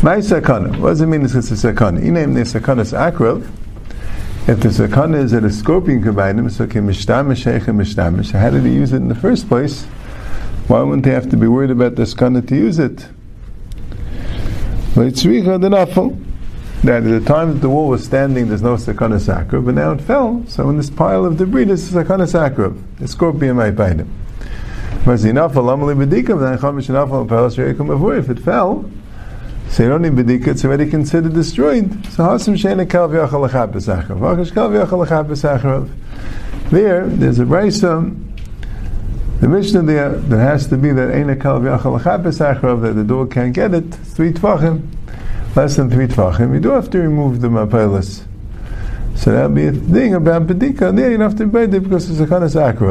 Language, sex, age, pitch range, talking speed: English, male, 50-69, 110-160 Hz, 155 wpm